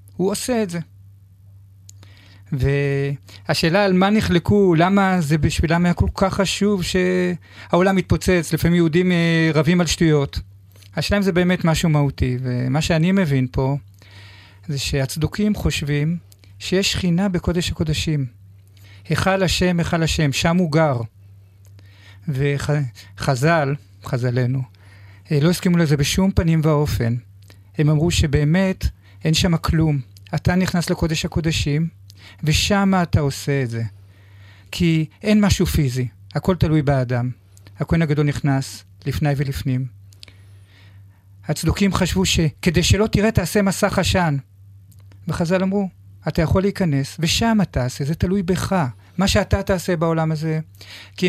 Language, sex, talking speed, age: Hebrew, male, 125 wpm, 40-59